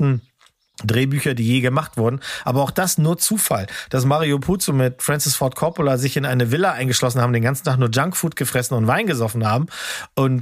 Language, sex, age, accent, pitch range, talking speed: German, male, 40-59, German, 130-155 Hz, 195 wpm